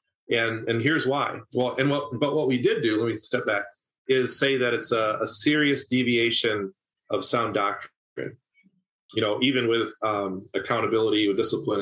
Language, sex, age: English, male, 30-49